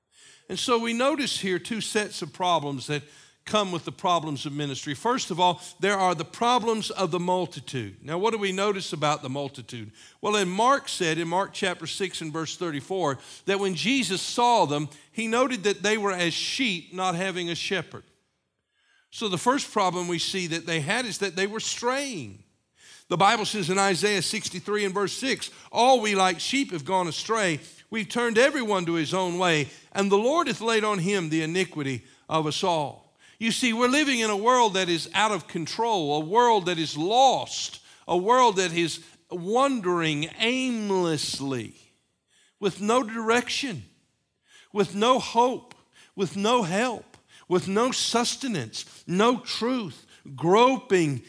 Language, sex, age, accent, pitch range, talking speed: English, male, 50-69, American, 160-220 Hz, 175 wpm